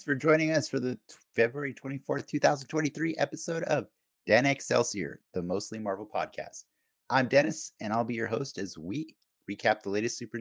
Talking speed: 165 wpm